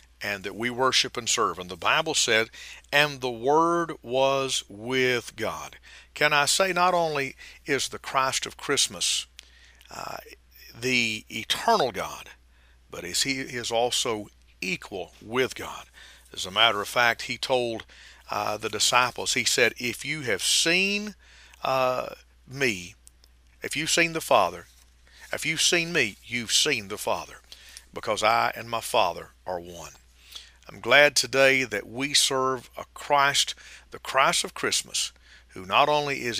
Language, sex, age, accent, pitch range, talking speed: English, male, 50-69, American, 90-130 Hz, 150 wpm